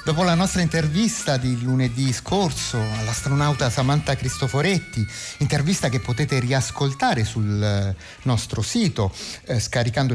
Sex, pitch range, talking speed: male, 115-165 Hz, 110 wpm